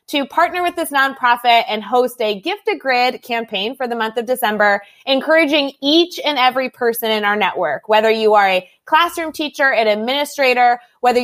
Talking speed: 180 wpm